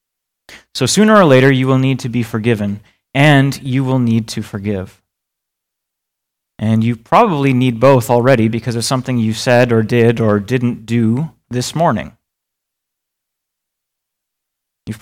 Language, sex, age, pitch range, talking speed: English, male, 30-49, 115-135 Hz, 140 wpm